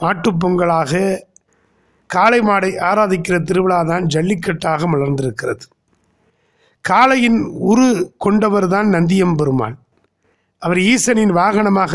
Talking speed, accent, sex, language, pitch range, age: 75 wpm, native, male, Tamil, 165-220 Hz, 50-69